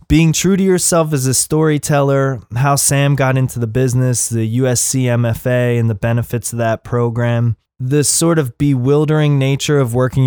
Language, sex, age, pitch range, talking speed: English, male, 20-39, 115-135 Hz, 170 wpm